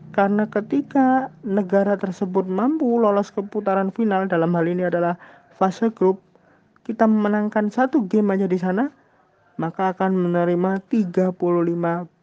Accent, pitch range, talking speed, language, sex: native, 140-195 Hz, 130 wpm, Indonesian, male